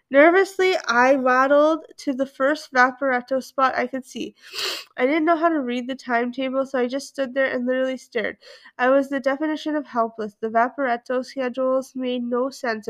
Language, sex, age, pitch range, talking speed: English, female, 20-39, 235-280 Hz, 180 wpm